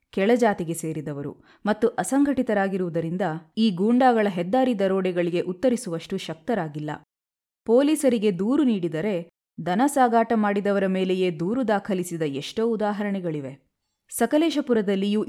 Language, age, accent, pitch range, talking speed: Kannada, 20-39, native, 175-230 Hz, 80 wpm